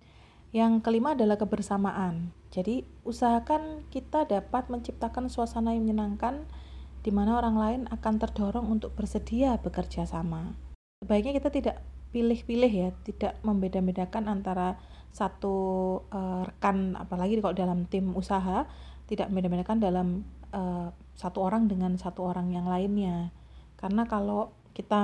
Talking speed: 125 wpm